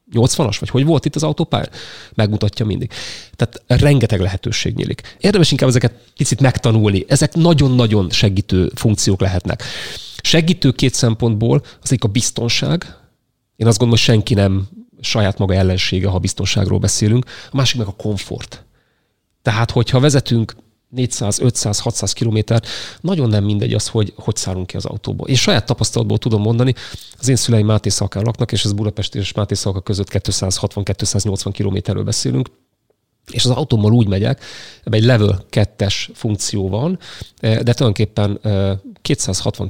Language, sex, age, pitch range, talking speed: Hungarian, male, 30-49, 100-125 Hz, 150 wpm